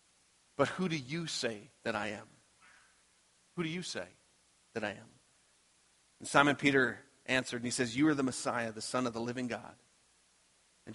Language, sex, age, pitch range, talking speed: English, male, 40-59, 125-150 Hz, 180 wpm